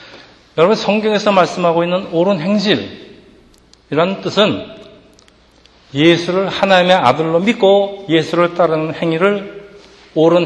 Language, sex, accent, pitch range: Korean, male, native, 145-190 Hz